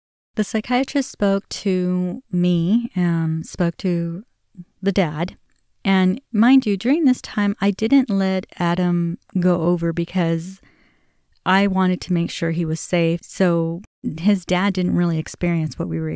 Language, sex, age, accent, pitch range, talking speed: English, female, 30-49, American, 160-185 Hz, 150 wpm